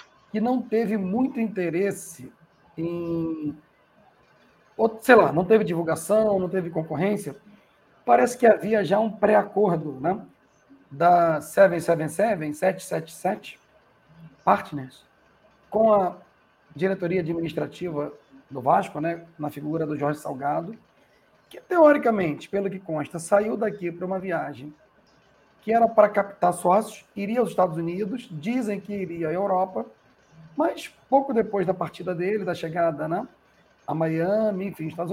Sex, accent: male, Brazilian